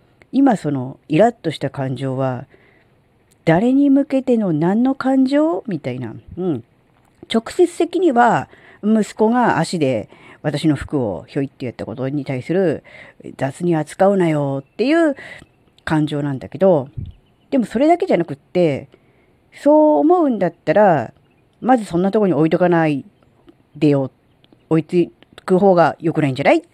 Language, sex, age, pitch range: Japanese, female, 40-59, 135-215 Hz